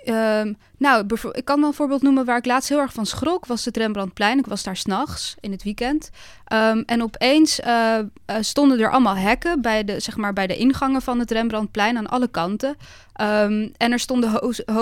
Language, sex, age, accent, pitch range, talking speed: Dutch, female, 20-39, Dutch, 200-240 Hz, 205 wpm